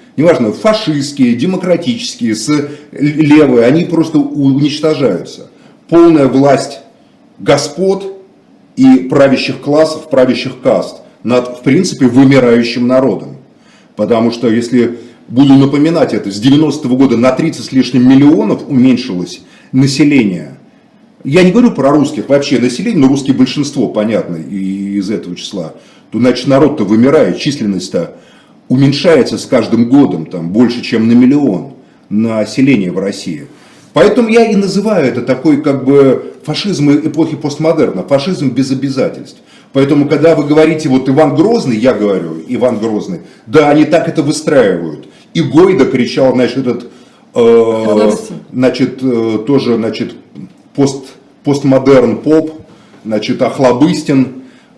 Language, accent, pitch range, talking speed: Russian, native, 120-150 Hz, 120 wpm